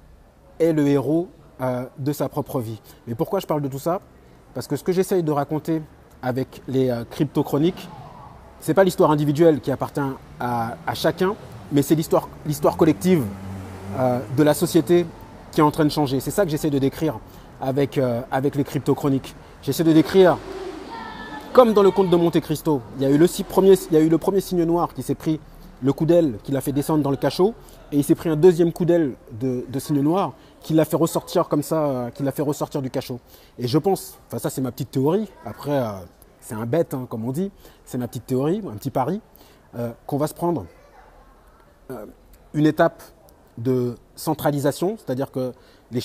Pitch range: 130-170 Hz